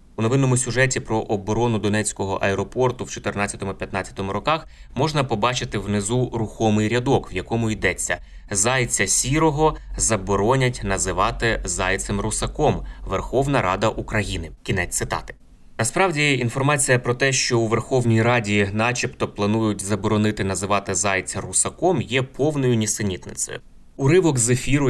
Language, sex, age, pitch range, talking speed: Ukrainian, male, 20-39, 100-120 Hz, 120 wpm